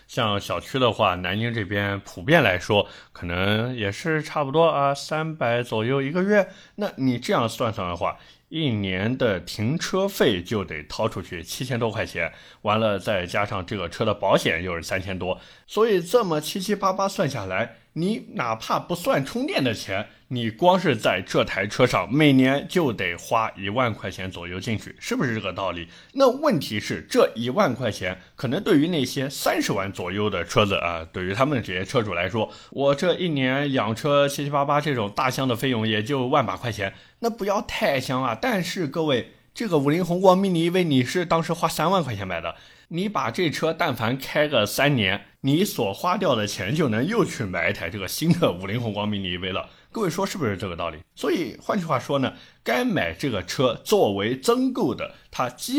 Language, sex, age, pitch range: Chinese, male, 20-39, 100-160 Hz